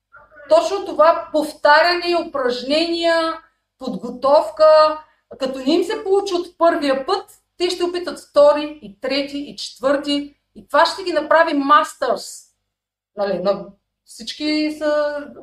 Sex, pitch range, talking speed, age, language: female, 240-315 Hz, 115 wpm, 30-49, Bulgarian